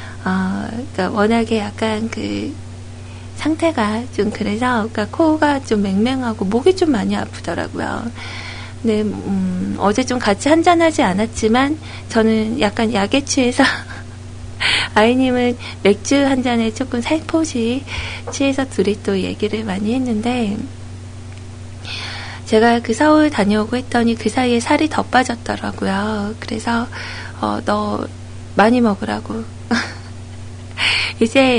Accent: native